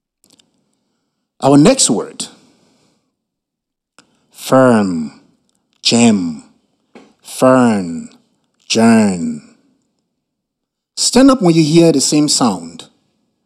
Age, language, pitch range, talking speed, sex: 60-79, English, 160-245 Hz, 65 wpm, male